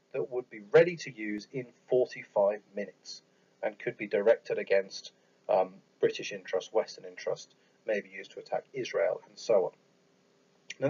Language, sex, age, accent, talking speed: English, male, 40-59, British, 155 wpm